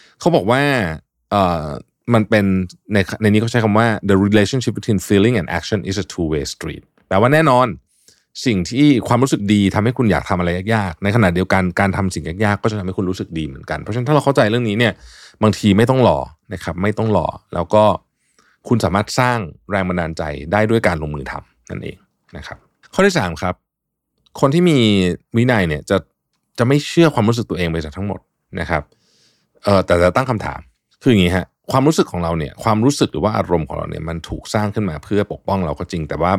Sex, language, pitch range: male, Thai, 85-115 Hz